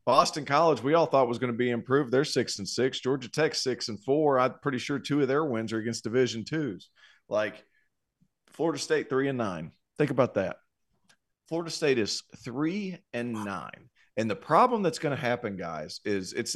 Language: English